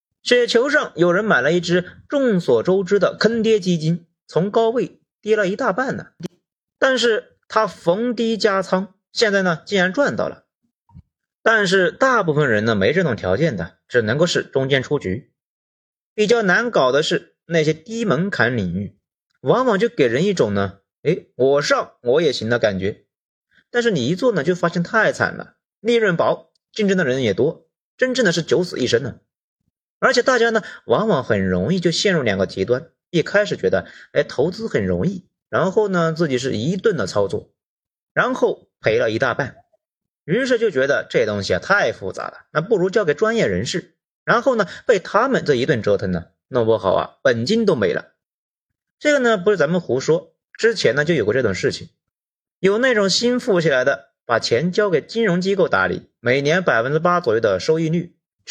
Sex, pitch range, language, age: male, 170-235 Hz, Chinese, 30-49